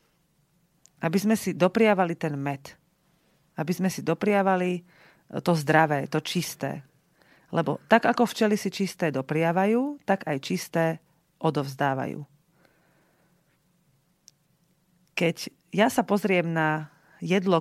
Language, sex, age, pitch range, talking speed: Slovak, female, 40-59, 155-185 Hz, 105 wpm